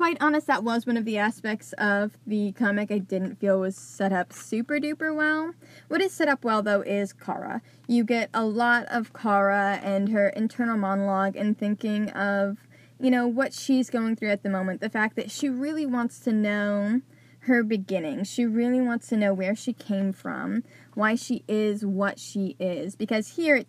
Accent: American